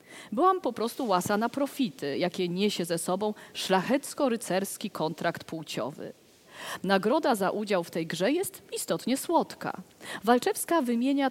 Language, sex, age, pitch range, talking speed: Polish, female, 50-69, 185-260 Hz, 125 wpm